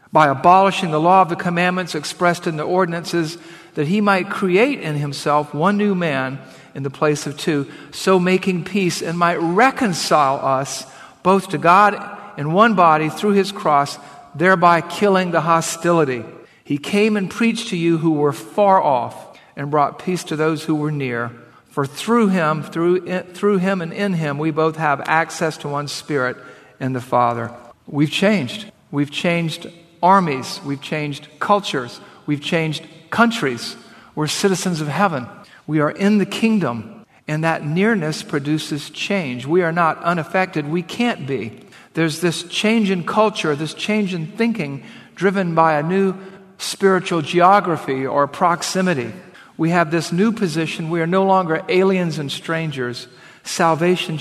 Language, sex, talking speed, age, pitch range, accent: English, male, 165 wpm, 50-69, 145-190 Hz, American